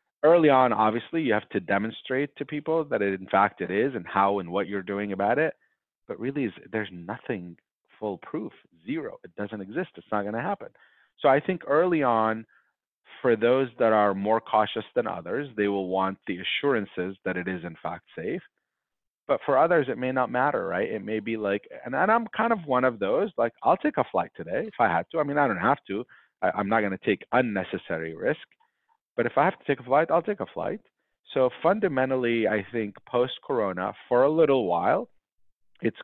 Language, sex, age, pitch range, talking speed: English, male, 30-49, 95-125 Hz, 210 wpm